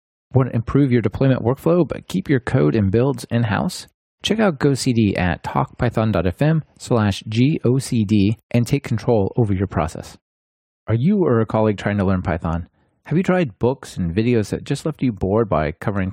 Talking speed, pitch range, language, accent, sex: 180 wpm, 100-135 Hz, English, American, male